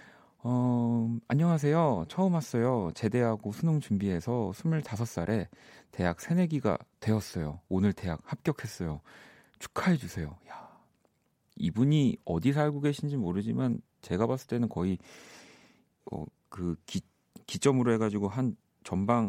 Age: 40-59